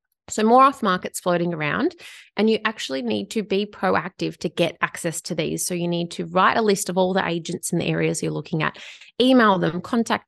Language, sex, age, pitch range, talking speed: English, female, 20-39, 175-205 Hz, 215 wpm